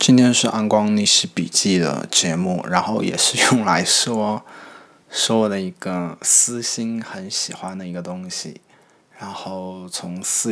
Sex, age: male, 20-39